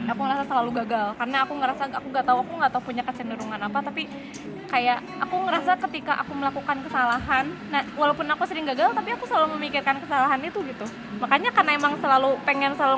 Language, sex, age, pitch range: Indonesian, female, 20-39, 220-275 Hz